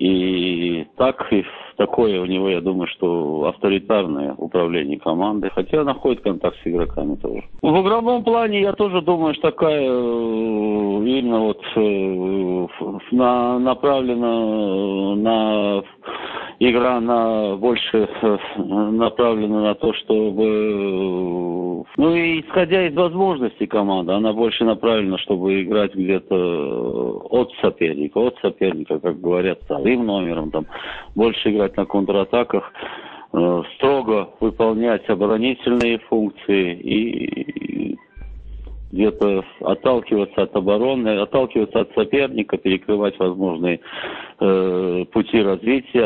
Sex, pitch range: male, 95-115 Hz